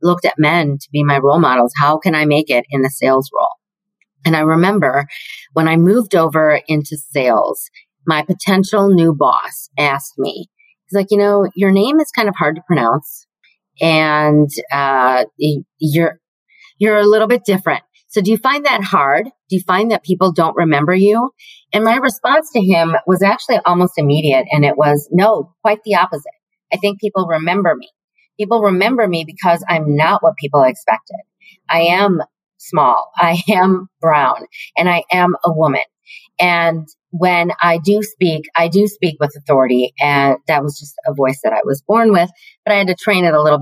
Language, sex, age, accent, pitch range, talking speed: English, female, 40-59, American, 150-210 Hz, 185 wpm